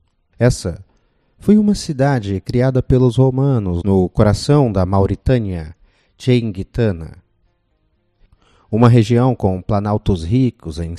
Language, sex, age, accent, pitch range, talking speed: Portuguese, male, 30-49, Brazilian, 90-120 Hz, 100 wpm